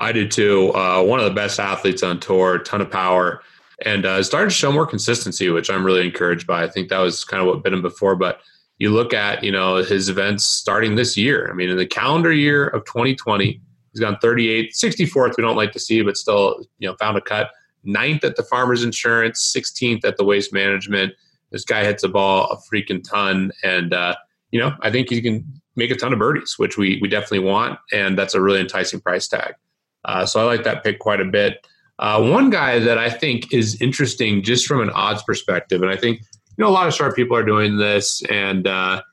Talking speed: 230 wpm